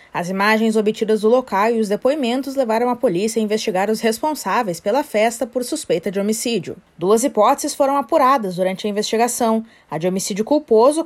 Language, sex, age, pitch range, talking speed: Portuguese, female, 20-39, 210-260 Hz, 175 wpm